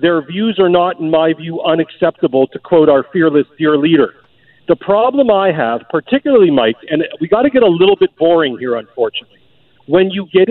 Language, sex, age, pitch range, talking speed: English, male, 50-69, 165-215 Hz, 195 wpm